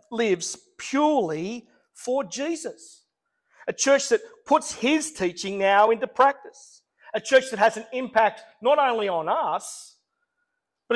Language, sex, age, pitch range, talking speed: English, male, 50-69, 185-265 Hz, 130 wpm